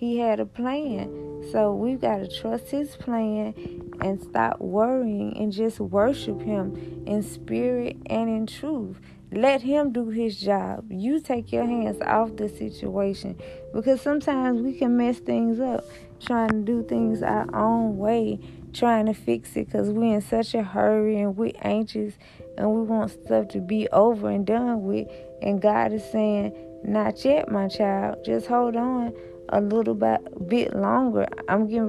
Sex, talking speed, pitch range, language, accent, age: female, 165 wpm, 185-235 Hz, English, American, 20-39